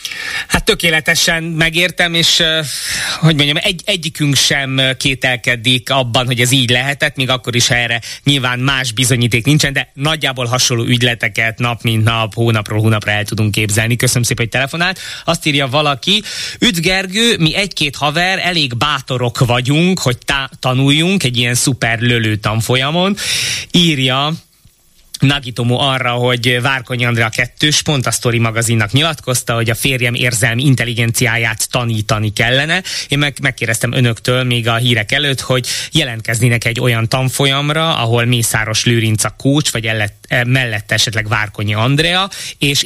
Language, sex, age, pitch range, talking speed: Hungarian, male, 20-39, 115-145 Hz, 140 wpm